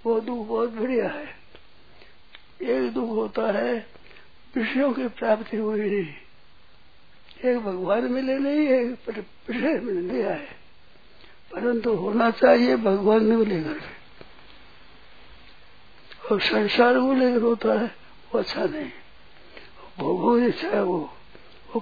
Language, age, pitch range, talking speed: Hindi, 60-79, 215-255 Hz, 115 wpm